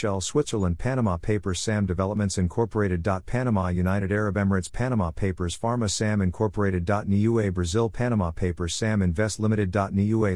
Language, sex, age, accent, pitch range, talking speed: English, male, 50-69, American, 95-110 Hz, 125 wpm